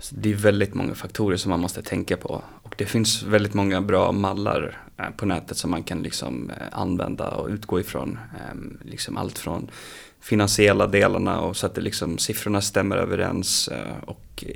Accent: native